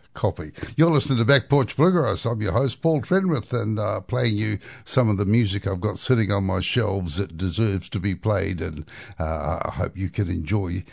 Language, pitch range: English, 95-120 Hz